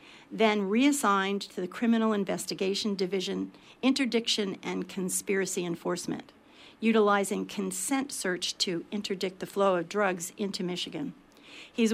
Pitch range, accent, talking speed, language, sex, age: 190-225 Hz, American, 115 wpm, English, female, 50-69